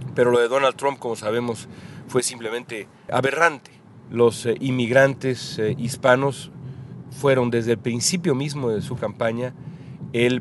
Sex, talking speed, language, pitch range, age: male, 140 wpm, English, 110-130 Hz, 40-59